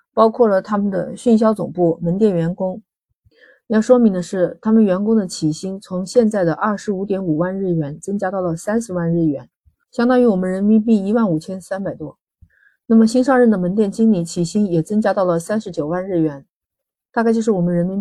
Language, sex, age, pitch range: Chinese, female, 30-49, 175-220 Hz